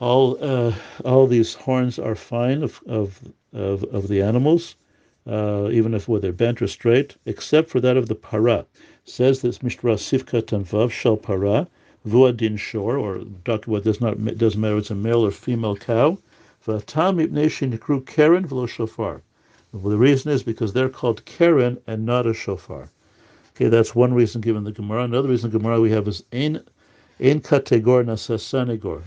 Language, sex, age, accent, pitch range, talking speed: English, male, 60-79, American, 110-125 Hz, 155 wpm